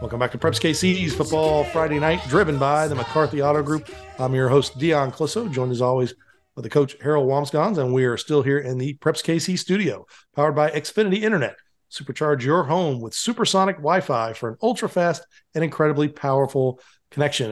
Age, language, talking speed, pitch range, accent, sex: 40-59, English, 185 wpm, 130-160 Hz, American, male